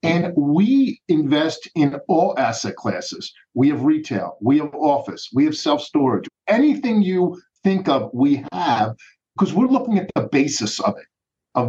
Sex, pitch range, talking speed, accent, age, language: male, 135-205 Hz, 160 wpm, American, 50-69, English